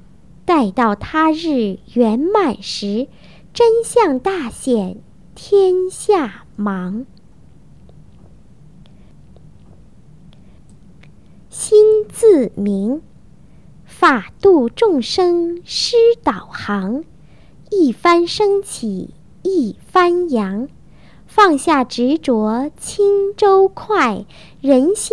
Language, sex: English, male